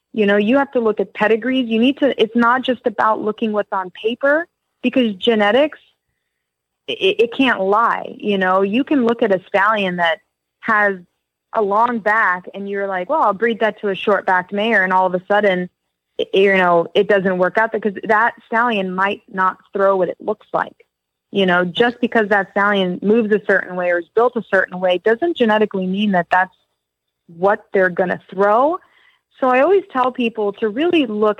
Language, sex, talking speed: English, female, 200 wpm